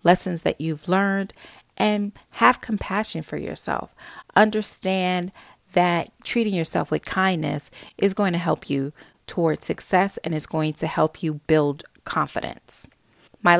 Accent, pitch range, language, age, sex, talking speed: American, 155-205 Hz, English, 30-49, female, 135 wpm